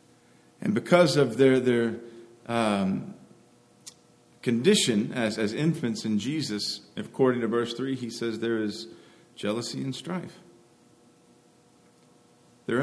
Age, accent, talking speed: 50-69, American, 110 wpm